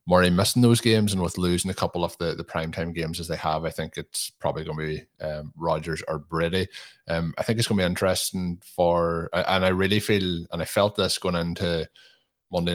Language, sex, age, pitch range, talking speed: English, male, 20-39, 80-95 Hz, 225 wpm